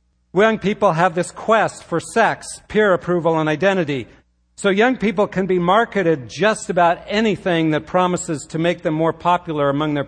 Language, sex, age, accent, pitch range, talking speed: English, male, 50-69, American, 155-195 Hz, 175 wpm